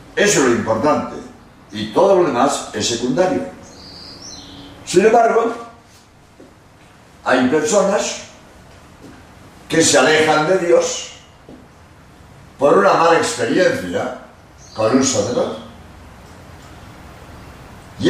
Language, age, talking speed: Spanish, 60-79, 90 wpm